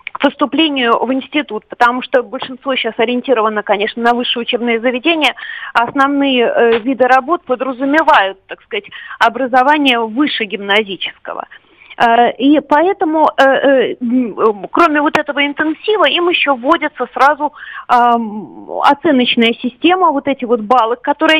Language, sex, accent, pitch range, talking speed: Russian, female, native, 245-315 Hz, 120 wpm